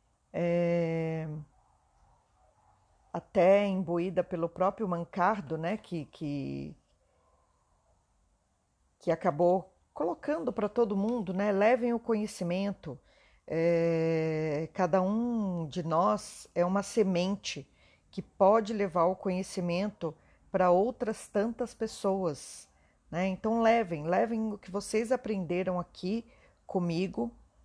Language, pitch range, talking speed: Portuguese, 160-210 Hz, 95 wpm